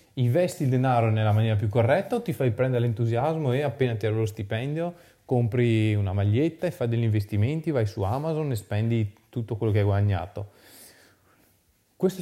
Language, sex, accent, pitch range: Italian, male, native, 105-130 Hz